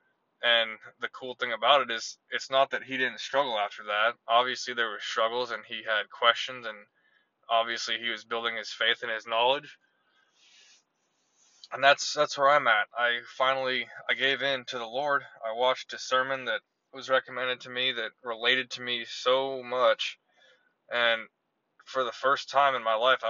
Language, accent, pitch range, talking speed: English, American, 120-135 Hz, 180 wpm